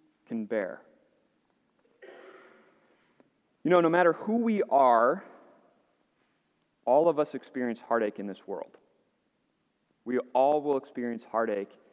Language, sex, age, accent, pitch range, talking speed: English, male, 30-49, American, 120-160 Hz, 110 wpm